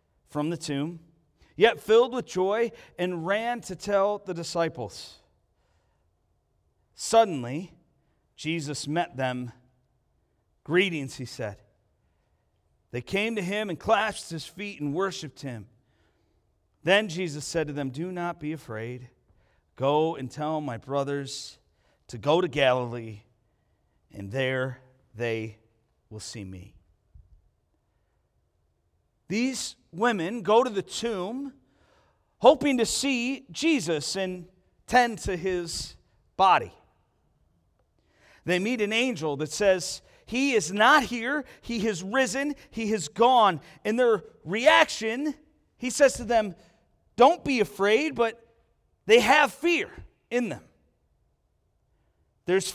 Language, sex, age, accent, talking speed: English, male, 40-59, American, 115 wpm